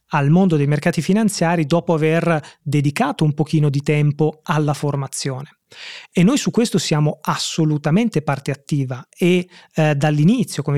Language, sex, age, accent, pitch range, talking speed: Italian, male, 30-49, native, 150-180 Hz, 145 wpm